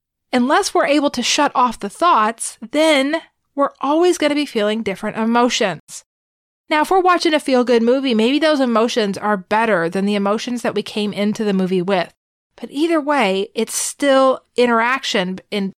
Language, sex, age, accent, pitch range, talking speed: English, female, 30-49, American, 205-275 Hz, 175 wpm